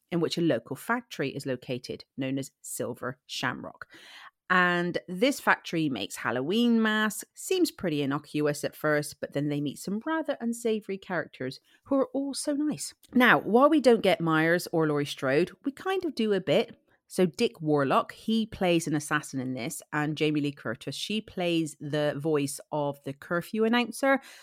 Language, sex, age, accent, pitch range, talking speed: English, female, 40-59, British, 145-215 Hz, 175 wpm